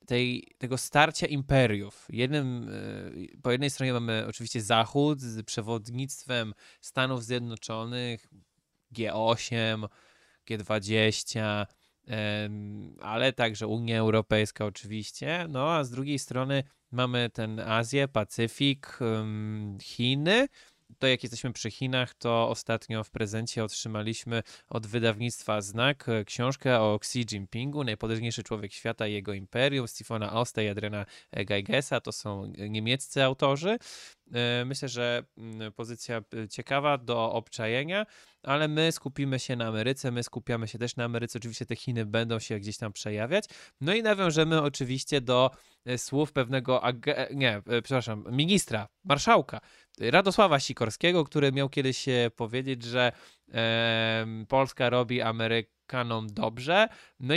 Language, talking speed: Polish, 115 wpm